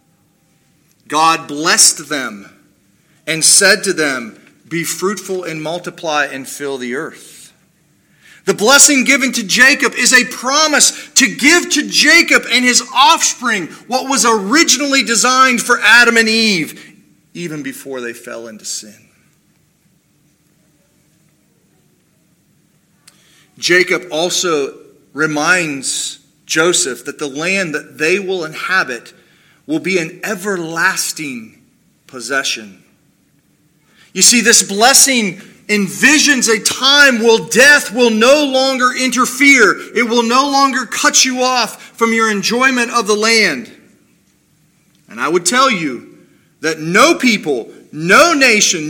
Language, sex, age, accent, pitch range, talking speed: English, male, 40-59, American, 160-255 Hz, 120 wpm